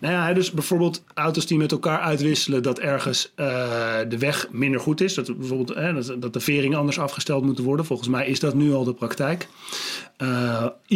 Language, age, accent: Dutch, 30-49, Dutch